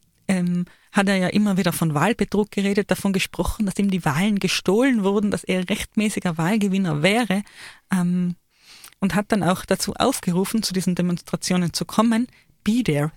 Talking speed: 165 wpm